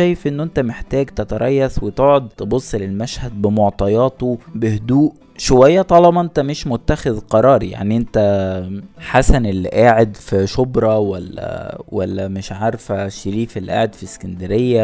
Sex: male